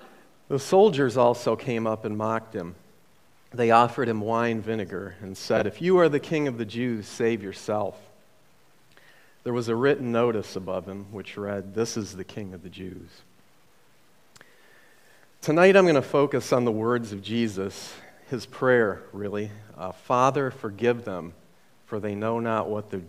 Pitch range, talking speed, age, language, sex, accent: 100-125 Hz, 165 wpm, 40-59, English, male, American